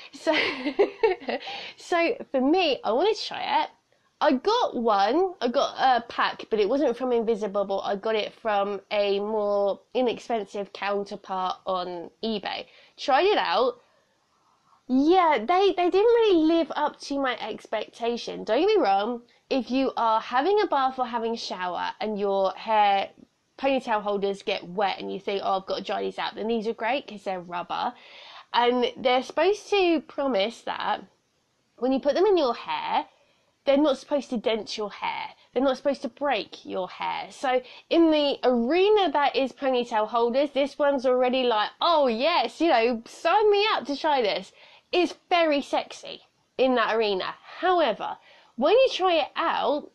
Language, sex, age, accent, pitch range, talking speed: English, female, 20-39, British, 220-330 Hz, 175 wpm